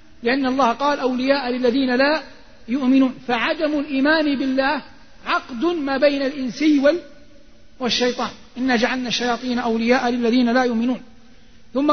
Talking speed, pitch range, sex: 115 wpm, 245-280 Hz, male